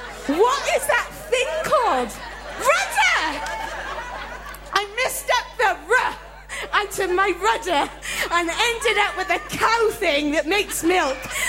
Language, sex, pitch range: English, female, 310-415 Hz